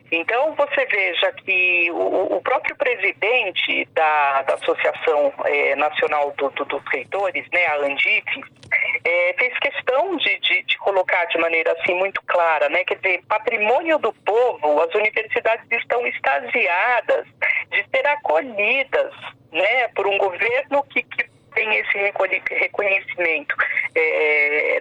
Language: Portuguese